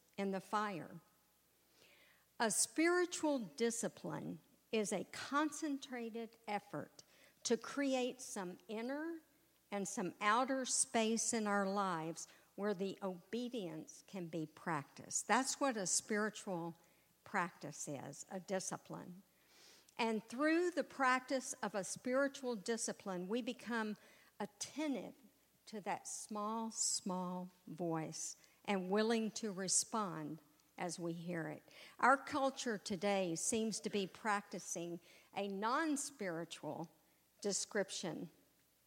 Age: 50-69